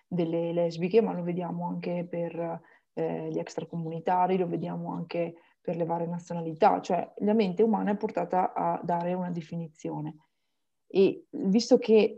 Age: 20-39